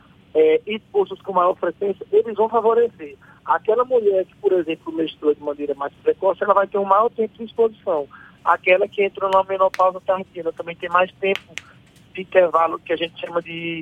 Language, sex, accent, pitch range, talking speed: Portuguese, male, Brazilian, 165-200 Hz, 190 wpm